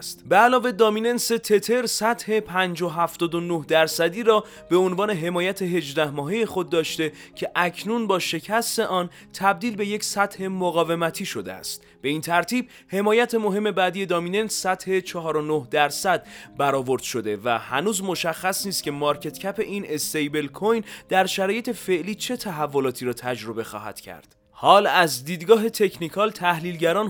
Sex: male